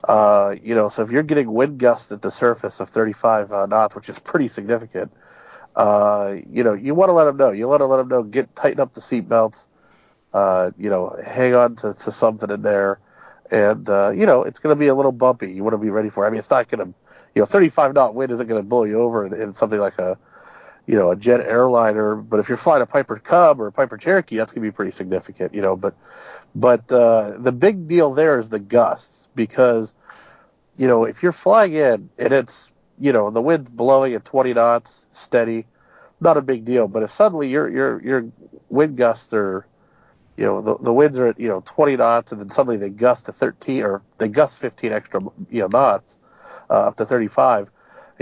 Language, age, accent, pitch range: English, 40-59, American, 105-135 Hz